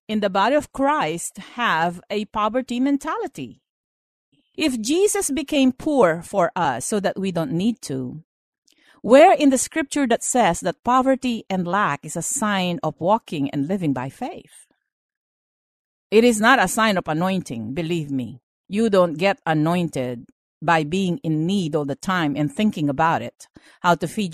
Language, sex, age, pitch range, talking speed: English, female, 50-69, 165-260 Hz, 165 wpm